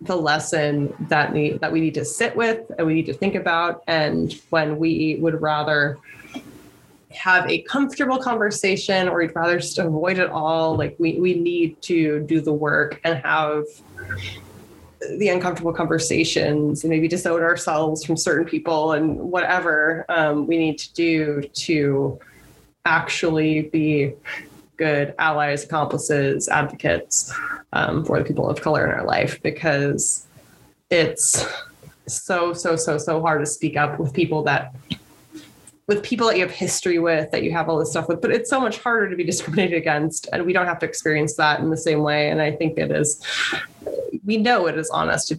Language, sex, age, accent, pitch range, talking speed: English, female, 20-39, American, 150-175 Hz, 175 wpm